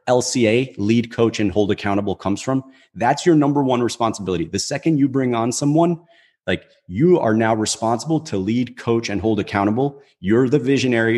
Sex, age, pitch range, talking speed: male, 30-49, 110-135 Hz, 175 wpm